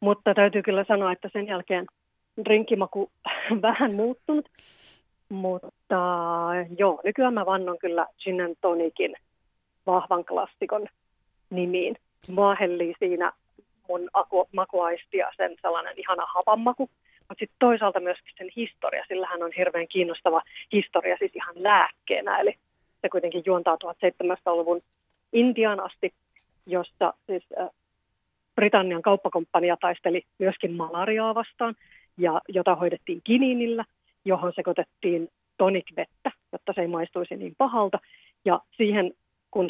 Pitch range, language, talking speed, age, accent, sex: 180-210 Hz, Finnish, 115 wpm, 30-49, native, female